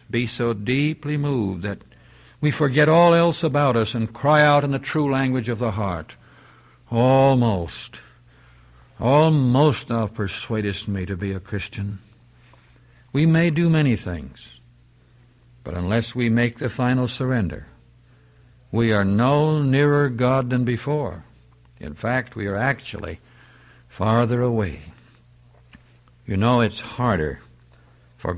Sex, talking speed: male, 130 wpm